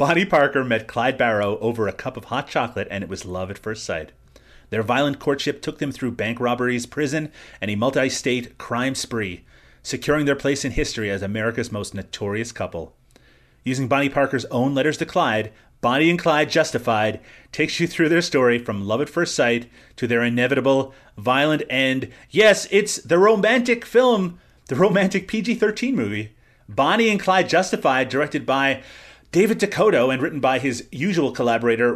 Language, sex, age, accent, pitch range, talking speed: English, male, 30-49, American, 115-165 Hz, 170 wpm